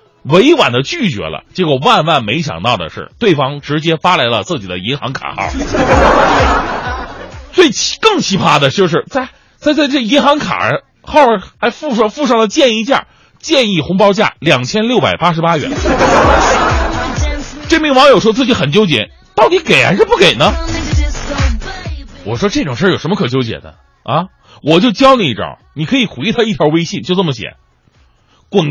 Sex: male